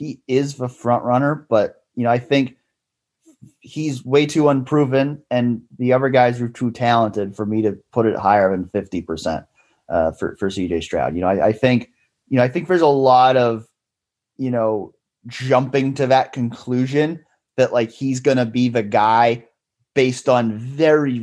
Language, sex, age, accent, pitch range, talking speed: English, male, 30-49, American, 110-140 Hz, 180 wpm